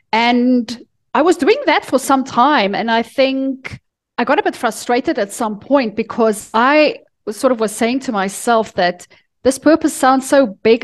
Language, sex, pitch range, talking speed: English, female, 205-250 Hz, 190 wpm